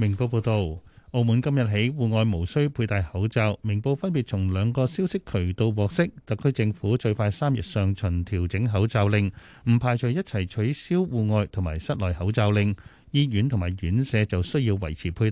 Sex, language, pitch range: male, Chinese, 100-130 Hz